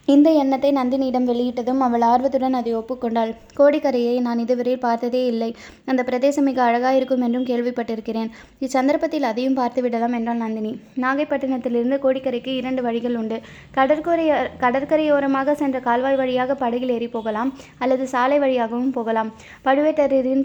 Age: 20-39